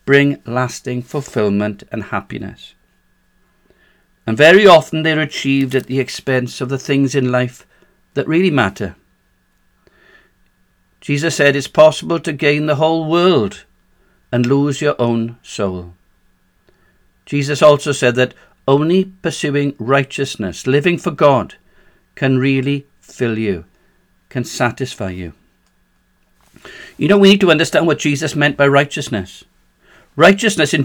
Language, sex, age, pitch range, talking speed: English, male, 60-79, 125-155 Hz, 125 wpm